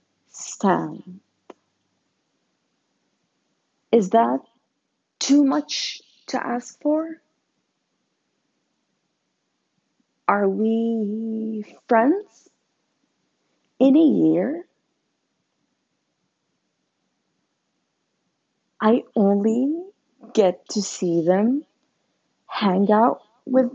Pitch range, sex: 195-275 Hz, female